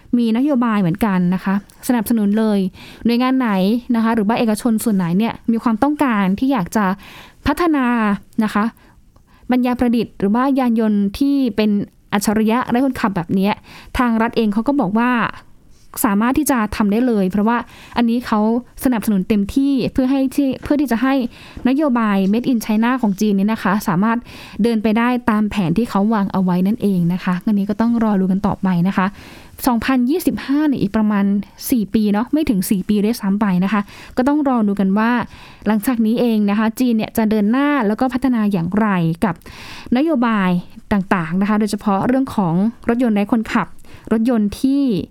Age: 10-29